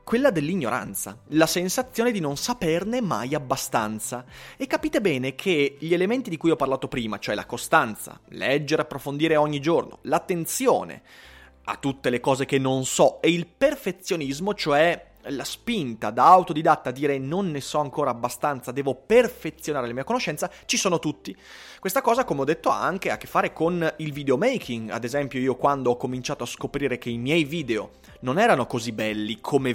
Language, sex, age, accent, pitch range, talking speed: Italian, male, 30-49, native, 120-165 Hz, 180 wpm